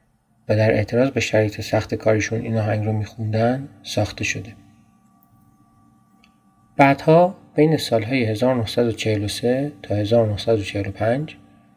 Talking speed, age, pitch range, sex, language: 95 wpm, 40-59, 110-140 Hz, male, Persian